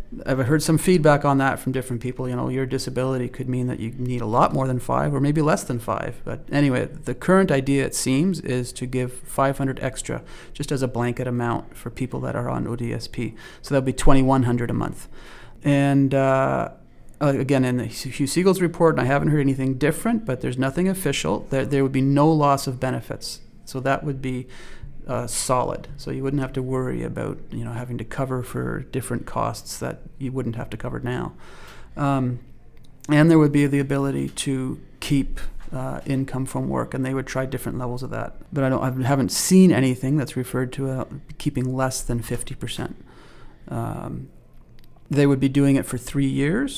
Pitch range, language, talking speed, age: 125-140 Hz, English, 200 wpm, 30-49